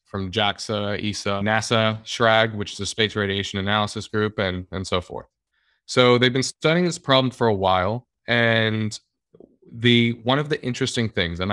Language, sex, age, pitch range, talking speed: English, male, 20-39, 95-115 Hz, 170 wpm